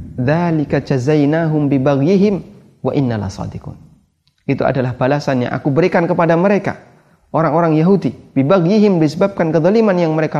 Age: 30-49